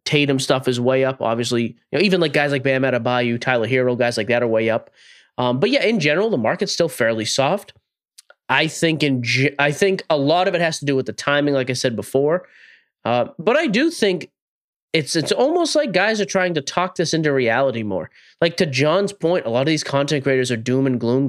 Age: 20-39